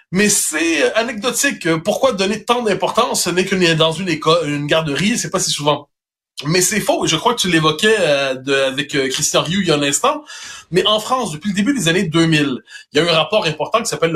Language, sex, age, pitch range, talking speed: French, male, 30-49, 155-230 Hz, 220 wpm